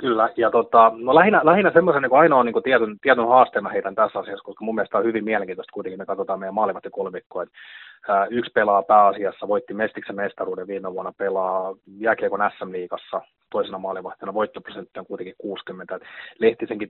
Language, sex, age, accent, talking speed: Finnish, male, 30-49, native, 180 wpm